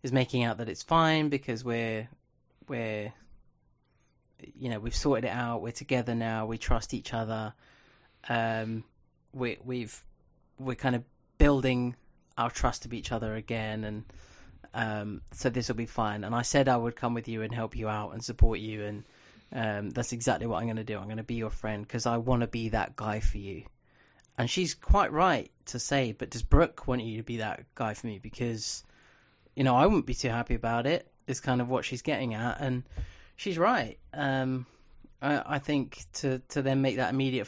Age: 20-39